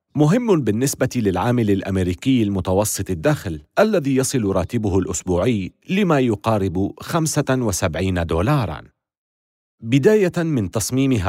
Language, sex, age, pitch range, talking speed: Arabic, male, 40-59, 95-140 Hz, 90 wpm